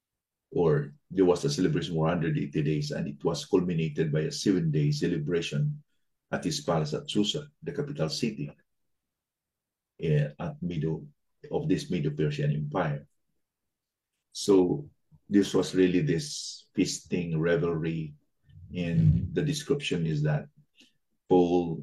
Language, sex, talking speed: English, male, 125 wpm